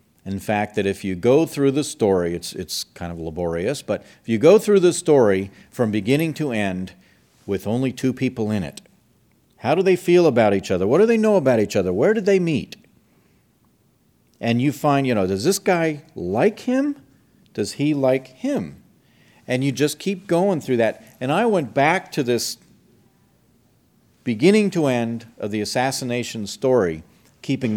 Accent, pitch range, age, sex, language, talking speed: American, 105-145 Hz, 40-59, male, English, 180 wpm